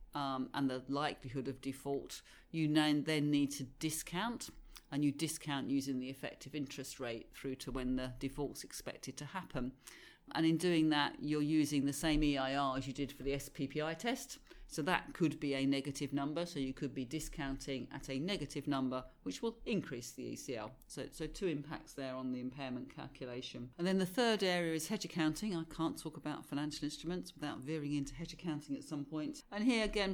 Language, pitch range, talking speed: English, 135-160 Hz, 195 wpm